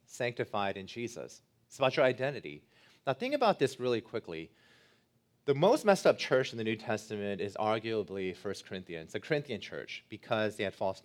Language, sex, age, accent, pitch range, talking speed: English, male, 30-49, American, 110-140 Hz, 180 wpm